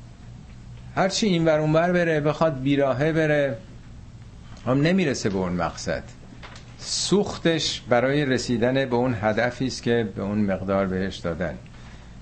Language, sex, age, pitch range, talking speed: Persian, male, 50-69, 105-150 Hz, 135 wpm